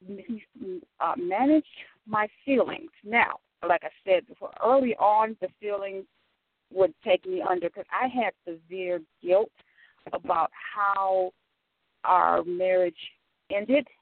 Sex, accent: female, American